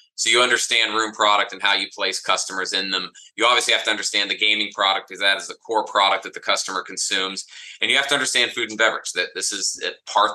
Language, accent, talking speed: English, American, 250 wpm